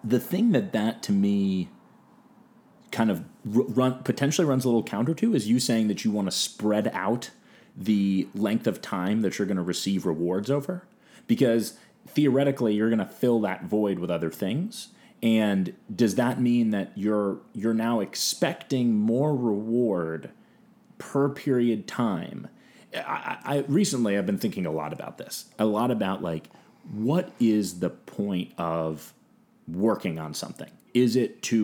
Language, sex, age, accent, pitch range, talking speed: English, male, 30-49, American, 90-130 Hz, 165 wpm